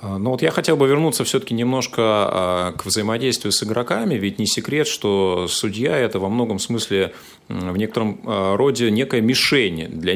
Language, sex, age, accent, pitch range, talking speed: Russian, male, 30-49, native, 95-130 Hz, 155 wpm